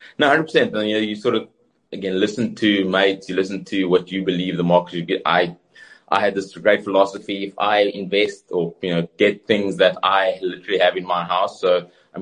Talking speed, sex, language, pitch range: 220 wpm, male, English, 95-135 Hz